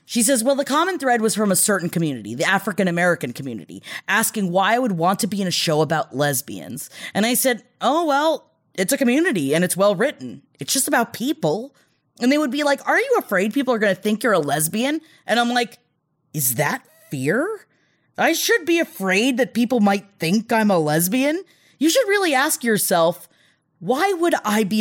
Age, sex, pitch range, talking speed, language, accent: 20-39, female, 195-300 Hz, 200 wpm, English, American